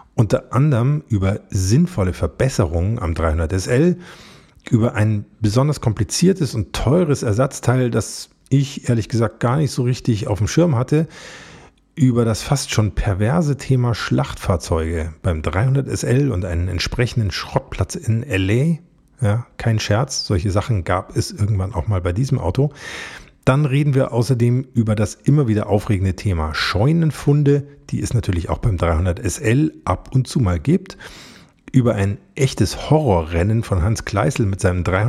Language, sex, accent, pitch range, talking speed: German, male, German, 95-135 Hz, 150 wpm